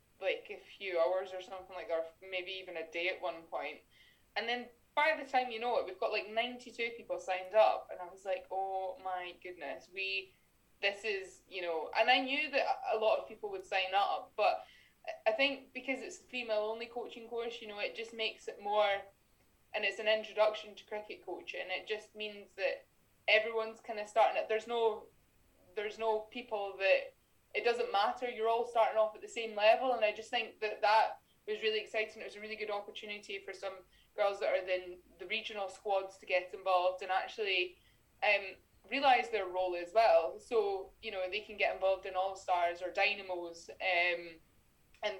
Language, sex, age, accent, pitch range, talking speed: English, female, 20-39, British, 185-235 Hz, 205 wpm